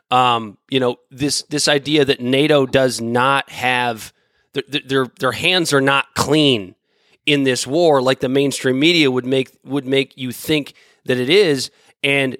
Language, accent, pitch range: English, American, 135-165 Hz